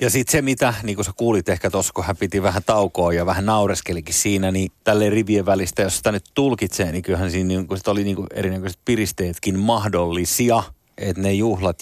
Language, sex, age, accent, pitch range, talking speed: Finnish, male, 30-49, native, 90-115 Hz, 210 wpm